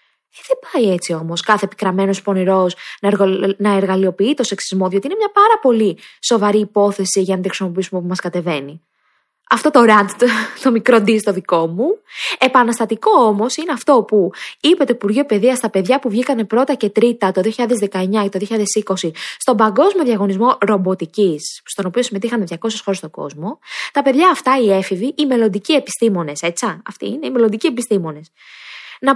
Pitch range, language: 190-245 Hz, Greek